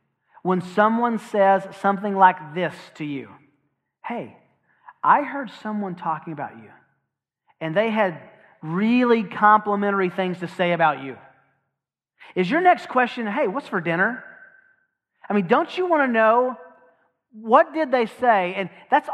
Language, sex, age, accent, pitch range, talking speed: English, male, 40-59, American, 175-230 Hz, 145 wpm